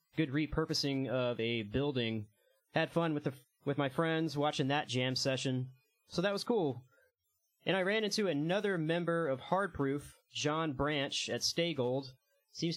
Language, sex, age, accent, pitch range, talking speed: English, male, 30-49, American, 120-155 Hz, 155 wpm